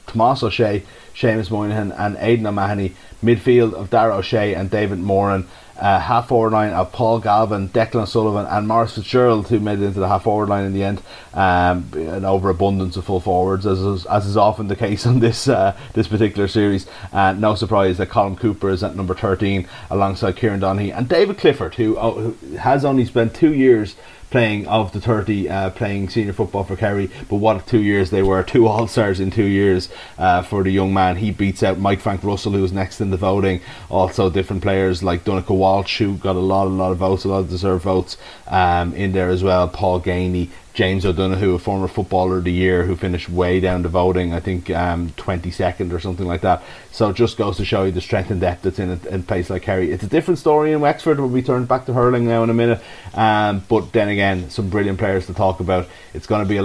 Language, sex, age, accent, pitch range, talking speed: English, male, 30-49, Irish, 95-110 Hz, 230 wpm